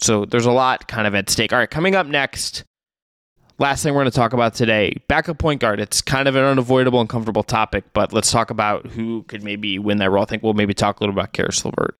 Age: 20-39